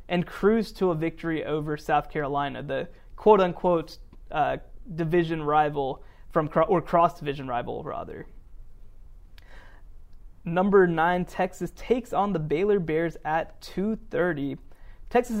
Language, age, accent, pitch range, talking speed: English, 20-39, American, 155-195 Hz, 115 wpm